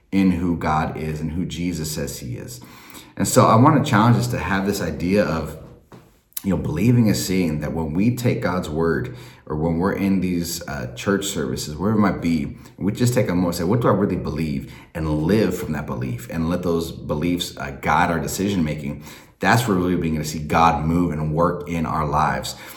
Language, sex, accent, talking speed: English, male, American, 215 wpm